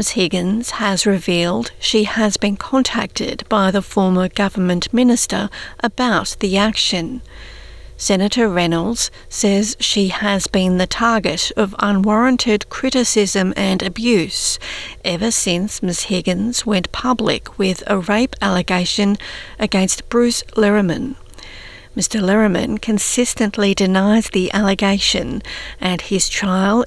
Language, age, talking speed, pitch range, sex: English, 50-69, 115 wpm, 190-225 Hz, female